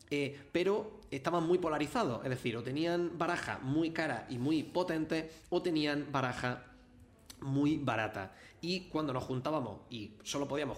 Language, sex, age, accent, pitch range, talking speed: Spanish, male, 20-39, Spanish, 125-155 Hz, 150 wpm